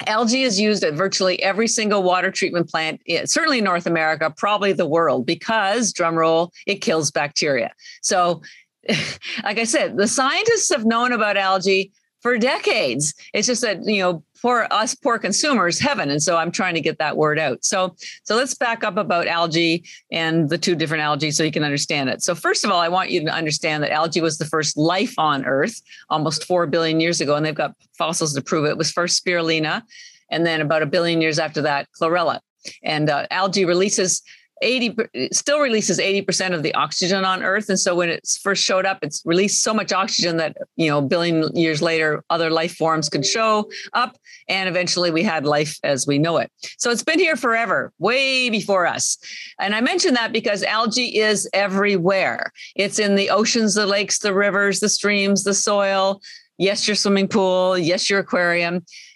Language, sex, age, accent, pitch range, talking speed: English, female, 50-69, American, 165-210 Hz, 200 wpm